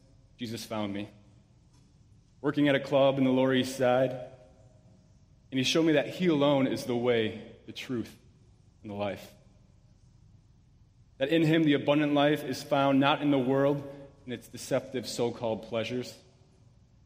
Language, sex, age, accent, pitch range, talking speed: English, male, 30-49, American, 110-135 Hz, 155 wpm